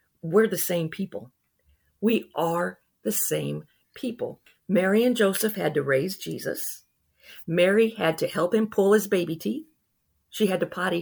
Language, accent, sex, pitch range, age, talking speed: English, American, female, 155-205 Hz, 50-69, 160 wpm